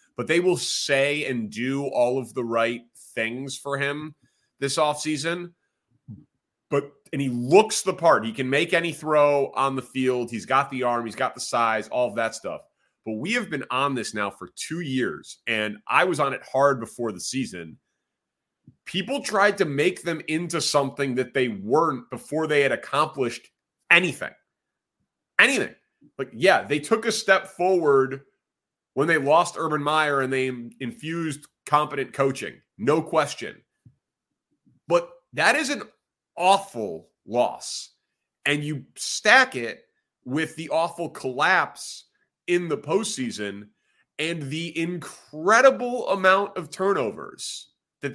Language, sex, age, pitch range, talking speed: English, male, 30-49, 130-170 Hz, 145 wpm